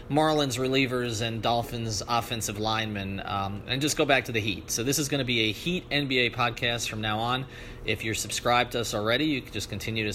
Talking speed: 225 wpm